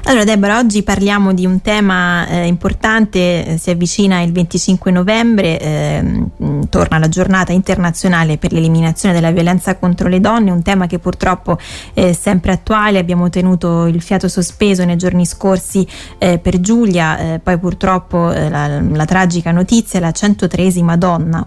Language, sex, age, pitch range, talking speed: Italian, female, 20-39, 175-195 Hz, 155 wpm